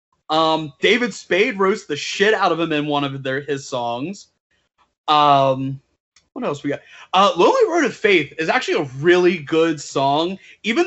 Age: 30-49